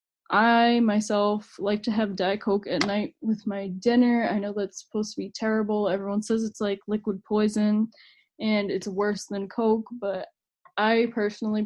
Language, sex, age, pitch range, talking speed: English, female, 10-29, 210-245 Hz, 170 wpm